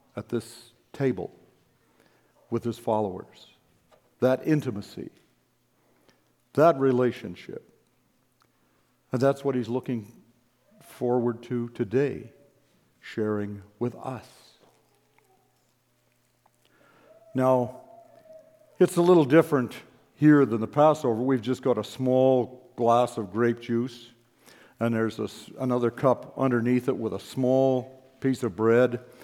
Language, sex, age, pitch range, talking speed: English, male, 60-79, 115-140 Hz, 105 wpm